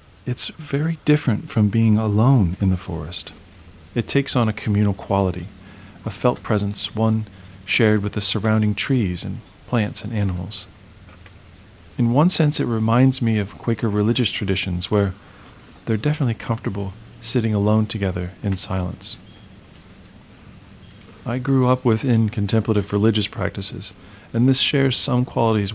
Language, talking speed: English, 135 wpm